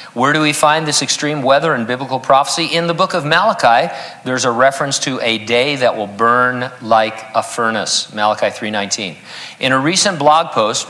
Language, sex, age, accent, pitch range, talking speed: English, male, 50-69, American, 115-145 Hz, 185 wpm